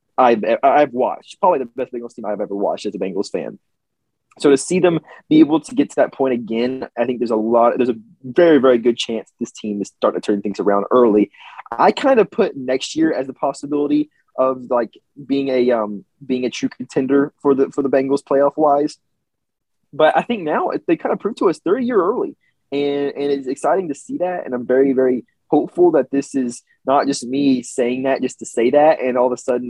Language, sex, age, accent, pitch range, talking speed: English, male, 20-39, American, 120-150 Hz, 230 wpm